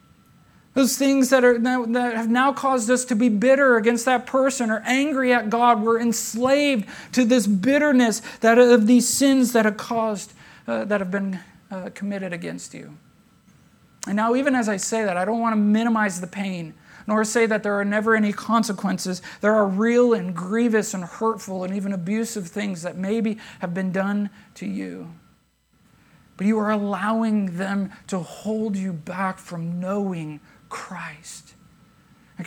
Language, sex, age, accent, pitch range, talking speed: English, male, 40-59, American, 190-235 Hz, 170 wpm